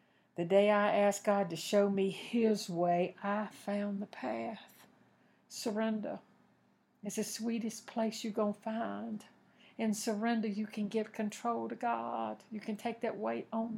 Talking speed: 160 wpm